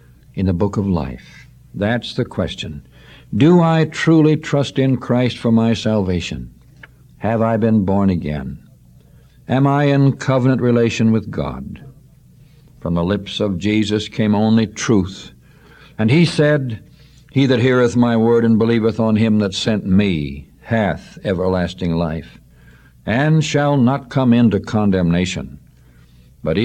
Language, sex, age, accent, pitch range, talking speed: English, male, 60-79, American, 95-125 Hz, 140 wpm